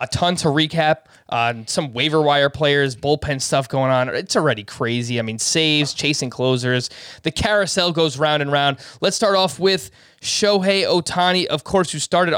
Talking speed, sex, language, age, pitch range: 180 wpm, male, English, 20-39, 135-170 Hz